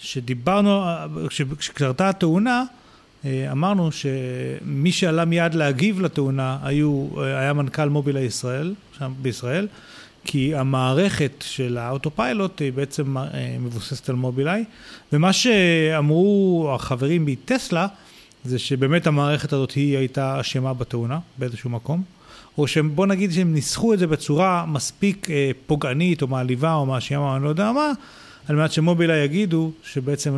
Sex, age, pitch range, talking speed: male, 40-59, 135-170 Hz, 125 wpm